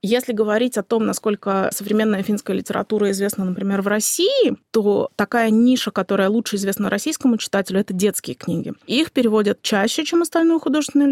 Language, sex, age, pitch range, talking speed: Russian, female, 20-39, 205-250 Hz, 155 wpm